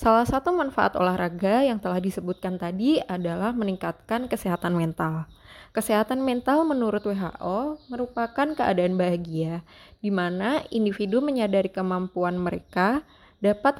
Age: 20-39